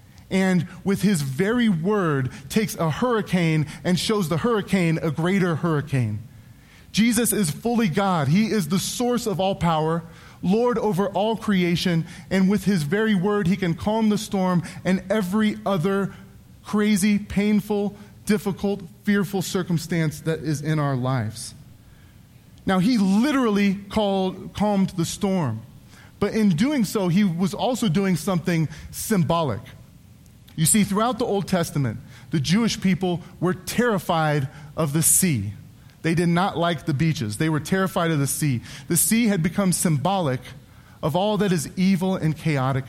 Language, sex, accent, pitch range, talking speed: English, male, American, 150-200 Hz, 150 wpm